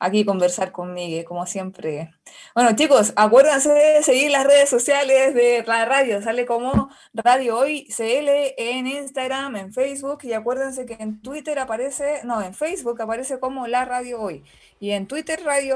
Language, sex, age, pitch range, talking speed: Spanish, female, 20-39, 215-265 Hz, 165 wpm